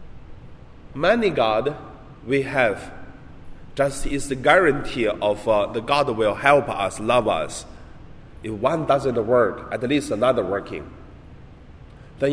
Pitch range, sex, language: 105-135 Hz, male, Chinese